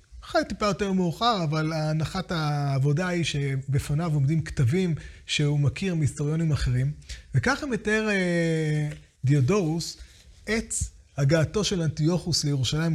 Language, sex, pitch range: Hebrew, male, 150-215 Hz